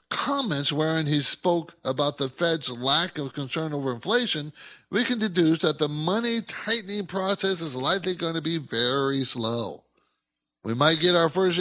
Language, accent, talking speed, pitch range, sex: English, American, 165 wpm, 125-180 Hz, male